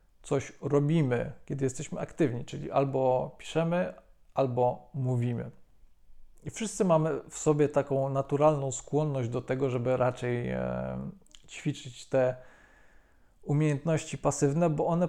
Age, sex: 40-59, male